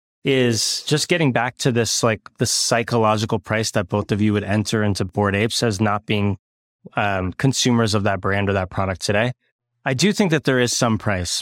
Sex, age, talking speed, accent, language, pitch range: male, 20-39, 205 wpm, American, English, 105-130 Hz